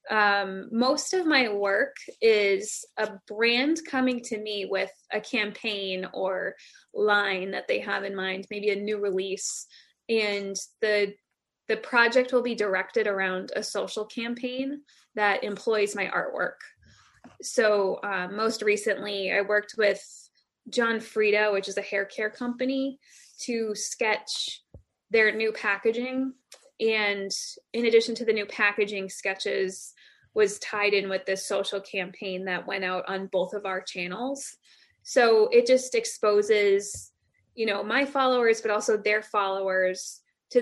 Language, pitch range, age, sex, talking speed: English, 195-240 Hz, 20-39, female, 140 wpm